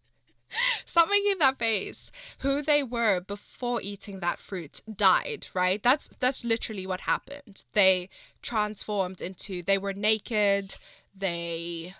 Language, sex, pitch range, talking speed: English, female, 175-215 Hz, 125 wpm